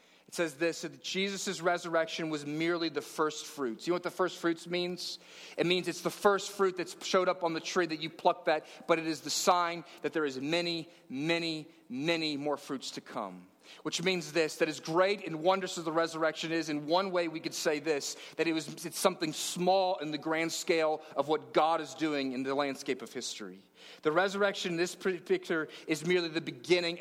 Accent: American